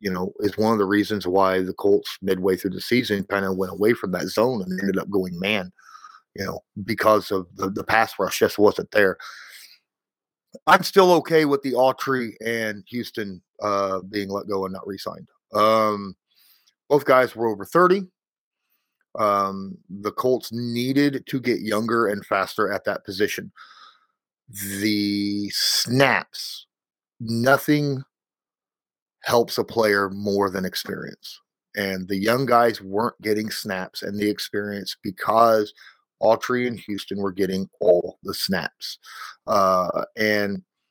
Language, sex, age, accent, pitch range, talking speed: English, male, 30-49, American, 100-120 Hz, 145 wpm